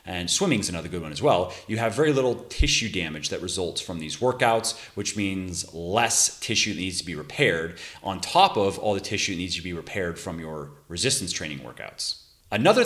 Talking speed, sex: 200 wpm, male